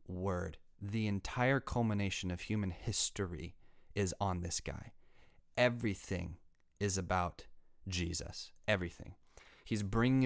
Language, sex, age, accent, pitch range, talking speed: English, male, 30-49, American, 90-115 Hz, 105 wpm